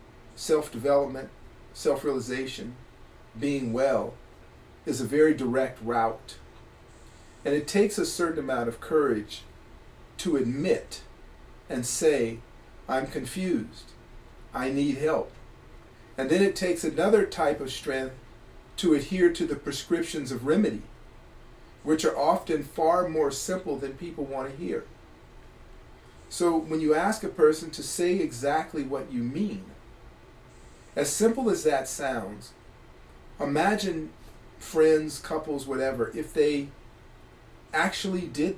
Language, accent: English, American